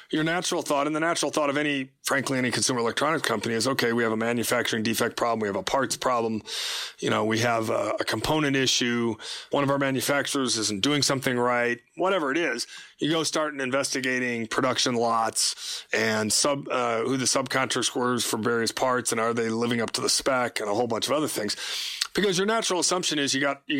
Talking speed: 215 wpm